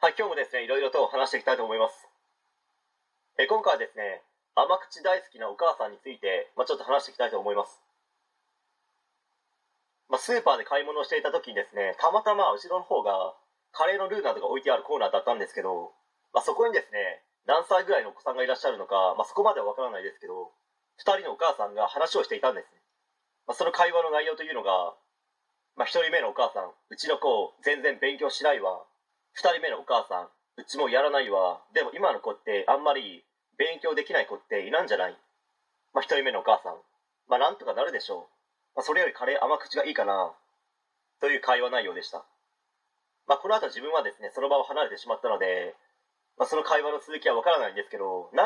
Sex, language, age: male, Japanese, 30-49